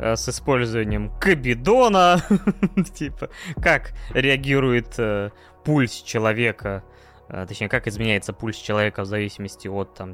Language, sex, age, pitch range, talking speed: Russian, male, 20-39, 110-150 Hz, 110 wpm